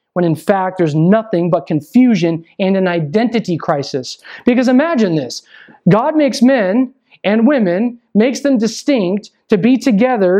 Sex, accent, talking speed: male, American, 145 wpm